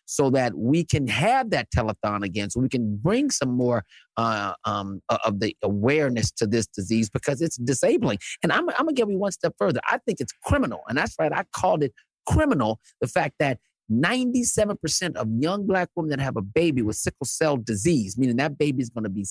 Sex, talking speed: male, 210 wpm